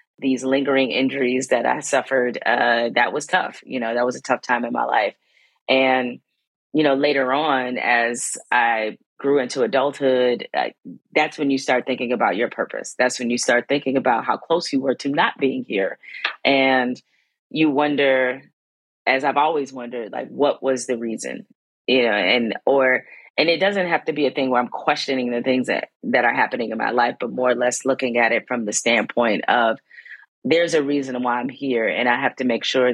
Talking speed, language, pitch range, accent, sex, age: 205 wpm, English, 125-140 Hz, American, female, 30-49